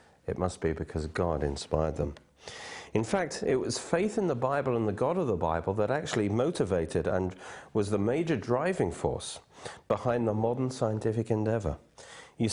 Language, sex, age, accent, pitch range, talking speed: English, male, 50-69, British, 95-140 Hz, 175 wpm